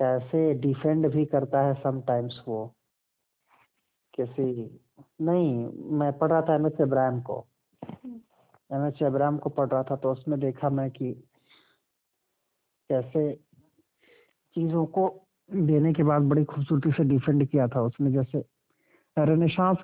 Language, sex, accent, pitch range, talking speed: Hindi, male, native, 130-155 Hz, 130 wpm